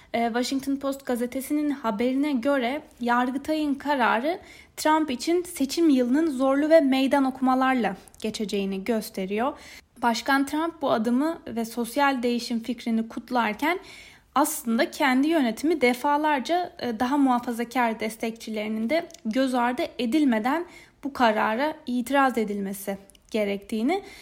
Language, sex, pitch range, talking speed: Turkish, female, 225-280 Hz, 105 wpm